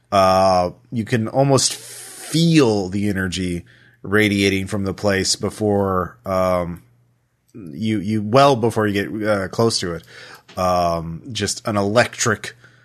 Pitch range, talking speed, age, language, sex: 95-110 Hz, 125 wpm, 30-49, English, male